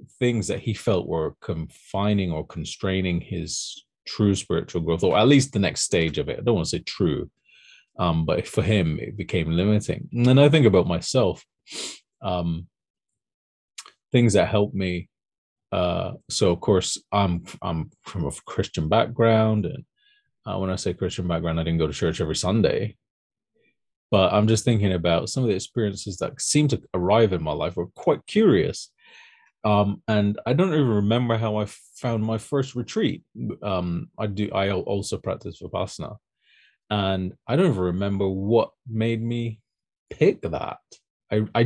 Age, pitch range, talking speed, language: 30-49, 90-120 Hz, 170 wpm, English